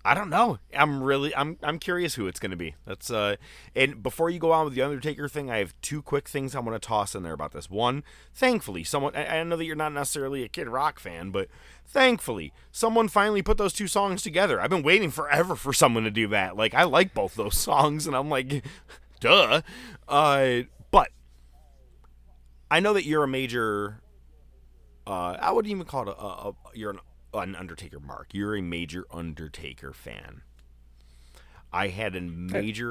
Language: English